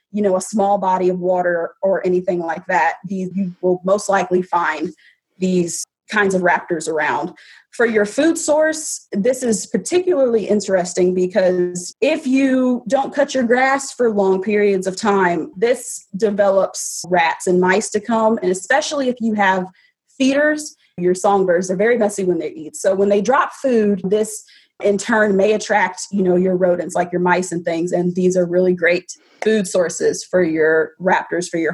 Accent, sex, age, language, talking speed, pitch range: American, female, 30-49, English, 180 wpm, 180-225 Hz